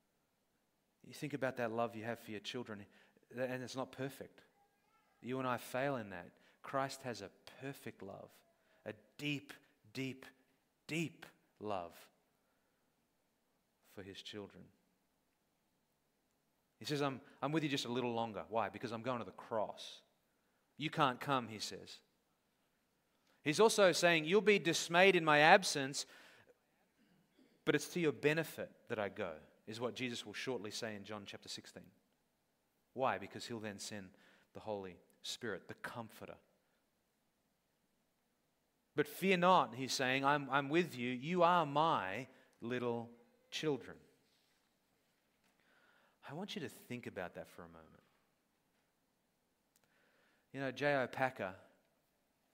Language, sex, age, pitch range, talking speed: English, male, 30-49, 115-150 Hz, 140 wpm